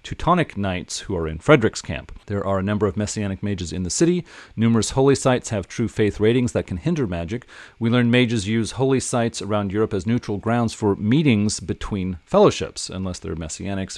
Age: 40-59